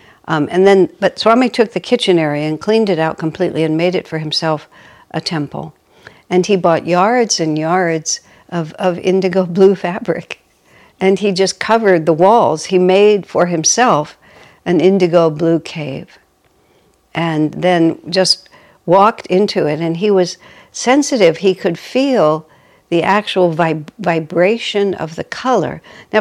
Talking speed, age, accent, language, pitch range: 155 wpm, 60-79, American, English, 165-205 Hz